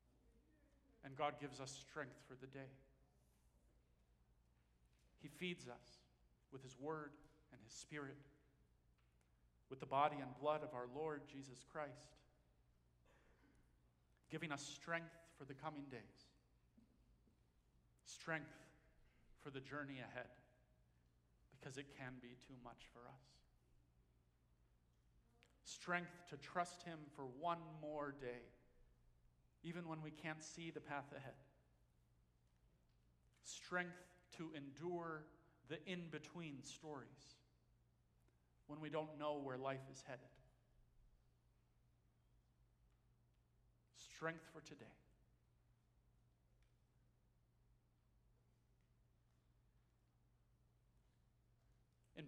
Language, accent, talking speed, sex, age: English, American, 95 wpm, male, 50-69